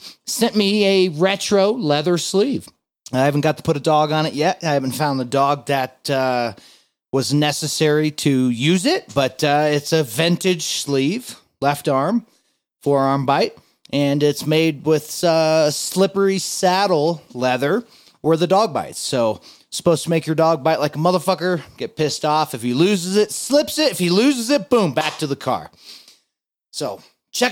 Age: 30-49